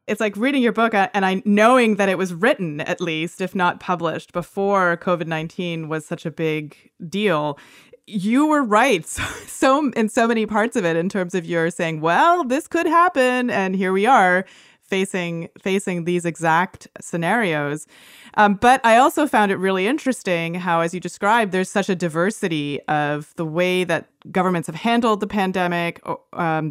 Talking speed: 180 wpm